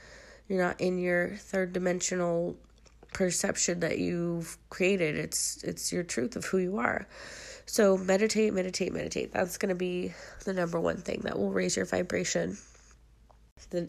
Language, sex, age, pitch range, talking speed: English, female, 30-49, 155-180 Hz, 155 wpm